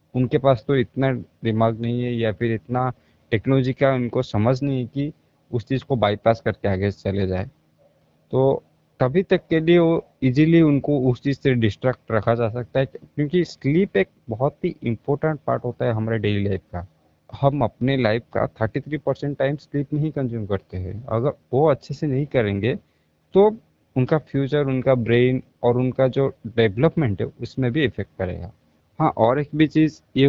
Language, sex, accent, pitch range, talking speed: Hindi, male, native, 110-145 Hz, 180 wpm